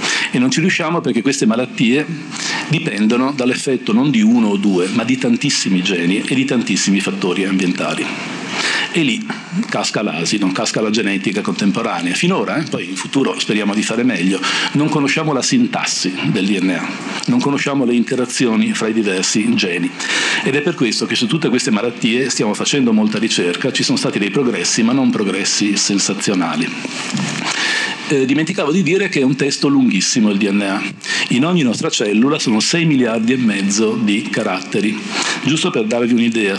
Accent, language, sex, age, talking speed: native, Italian, male, 50-69, 170 wpm